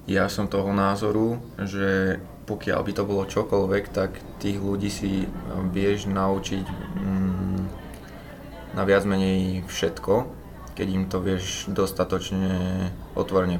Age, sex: 20-39, male